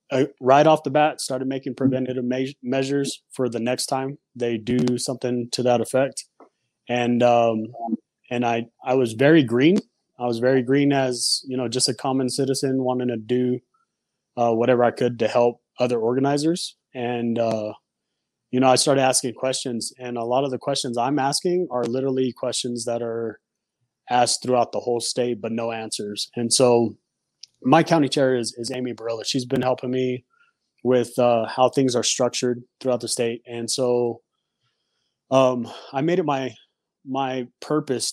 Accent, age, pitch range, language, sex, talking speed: American, 20-39, 120-130 Hz, English, male, 170 wpm